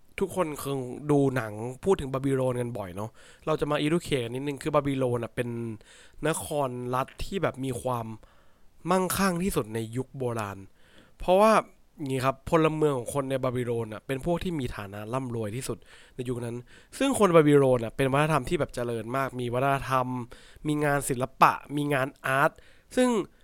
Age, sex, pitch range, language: 20-39, male, 120-150 Hz, English